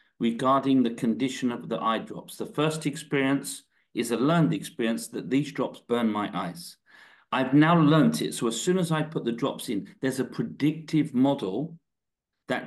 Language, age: English, 40-59